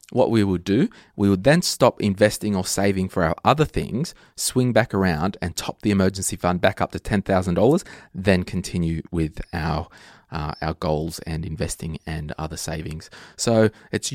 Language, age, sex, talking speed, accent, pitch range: English, 20-39, male, 180 wpm, Australian, 90-110 Hz